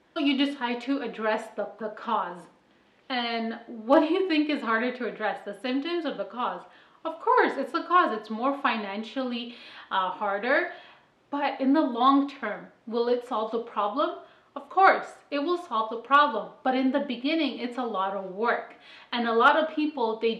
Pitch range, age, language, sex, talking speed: 220-275 Hz, 30-49, English, female, 185 wpm